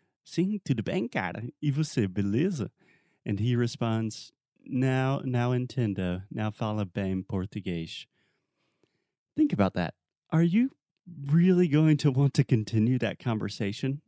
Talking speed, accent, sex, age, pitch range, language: 120 wpm, American, male, 30-49, 105-155 Hz, Portuguese